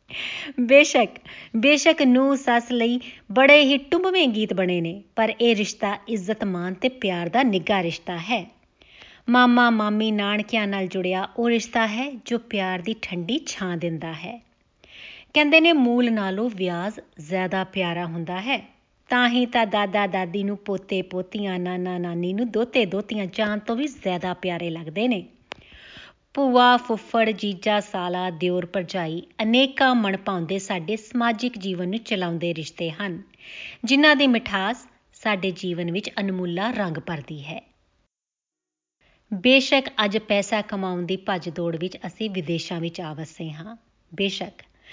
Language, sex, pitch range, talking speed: Punjabi, female, 180-240 Hz, 115 wpm